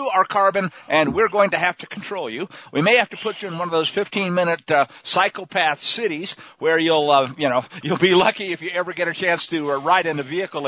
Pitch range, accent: 165-210 Hz, American